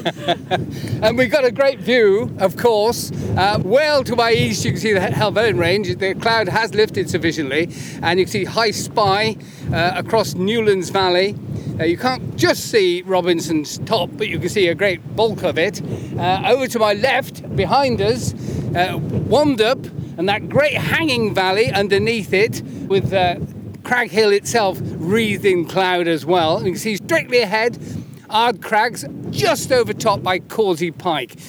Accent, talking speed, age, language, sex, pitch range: British, 170 wpm, 40-59, English, male, 170-230 Hz